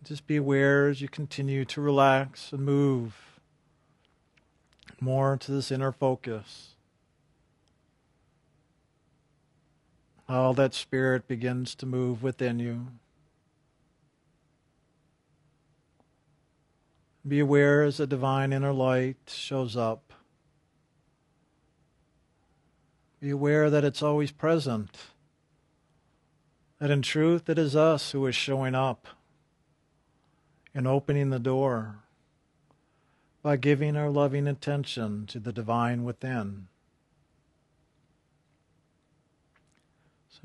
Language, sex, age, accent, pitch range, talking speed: English, male, 50-69, American, 130-150 Hz, 90 wpm